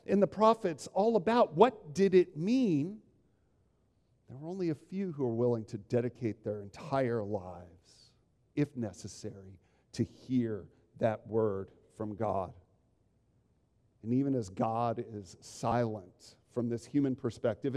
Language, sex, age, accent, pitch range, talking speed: English, male, 50-69, American, 120-165 Hz, 135 wpm